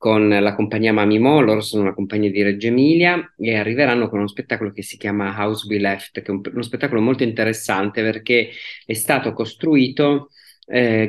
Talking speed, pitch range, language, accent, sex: 185 wpm, 105-125 Hz, Italian, native, male